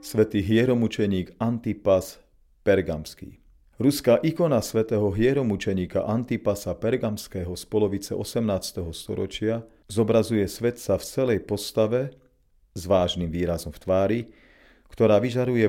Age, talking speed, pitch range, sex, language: 40-59, 100 wpm, 95-115 Hz, male, Slovak